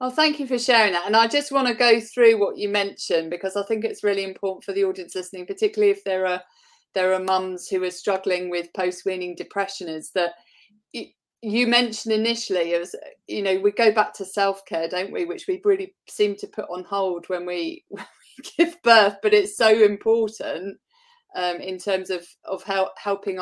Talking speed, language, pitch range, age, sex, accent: 210 wpm, English, 185-240 Hz, 30-49, female, British